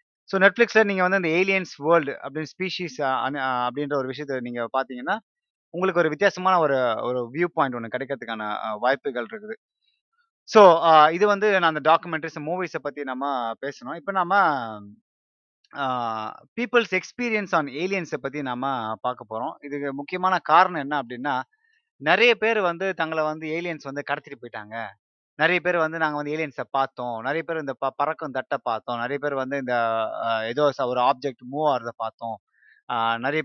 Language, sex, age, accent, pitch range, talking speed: Tamil, male, 20-39, native, 130-170 Hz, 150 wpm